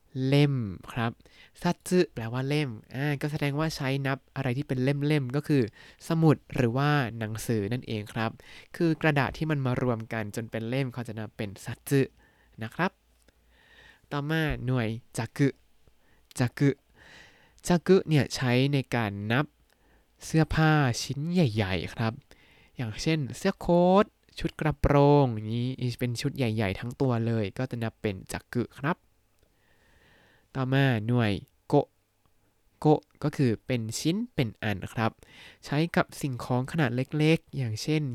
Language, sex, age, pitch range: Thai, male, 20-39, 115-145 Hz